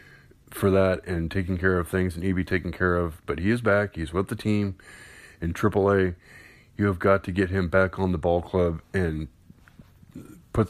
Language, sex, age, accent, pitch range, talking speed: English, male, 20-39, American, 90-100 Hz, 210 wpm